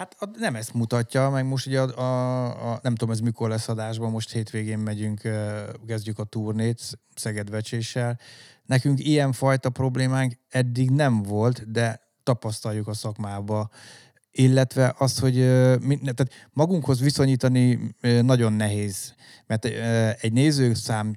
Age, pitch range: 30-49, 105-120 Hz